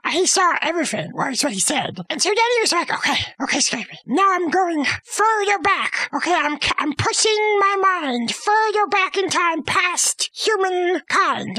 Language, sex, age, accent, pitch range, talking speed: English, male, 30-49, American, 270-375 Hz, 170 wpm